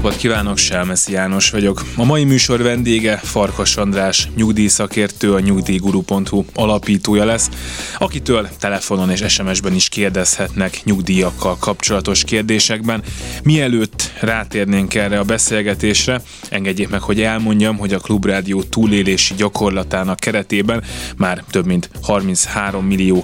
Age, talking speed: 20-39, 115 wpm